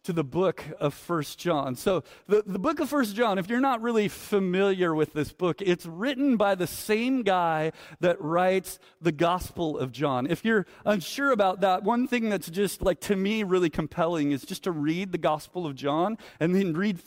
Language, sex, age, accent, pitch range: Japanese, male, 40-59, American, 170-220 Hz